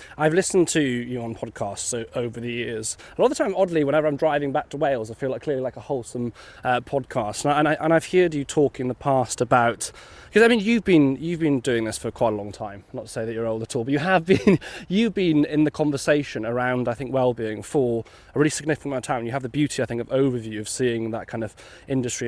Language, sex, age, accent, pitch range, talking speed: English, male, 20-39, British, 120-150 Hz, 260 wpm